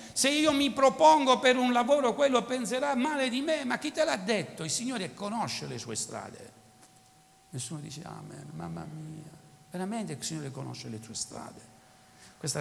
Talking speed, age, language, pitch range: 170 wpm, 60-79, Italian, 150-235 Hz